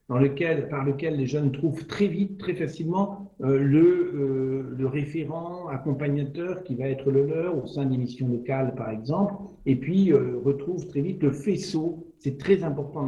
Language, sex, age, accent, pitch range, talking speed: French, male, 60-79, French, 140-170 Hz, 180 wpm